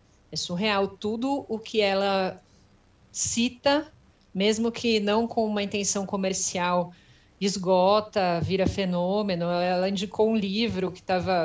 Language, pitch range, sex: Portuguese, 175-215 Hz, female